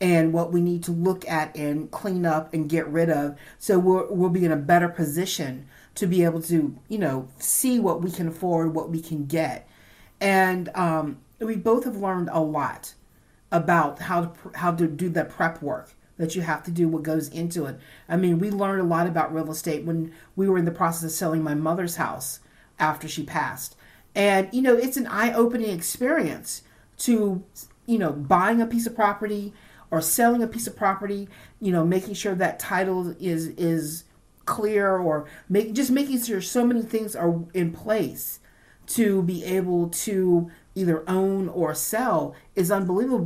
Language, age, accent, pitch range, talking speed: English, 40-59, American, 160-195 Hz, 190 wpm